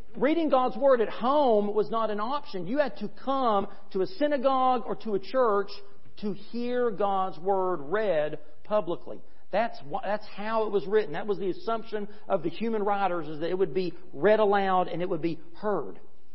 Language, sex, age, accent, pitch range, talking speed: English, male, 40-59, American, 185-245 Hz, 195 wpm